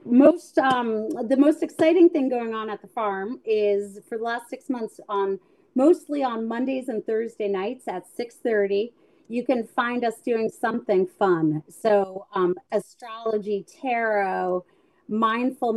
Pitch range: 205-250 Hz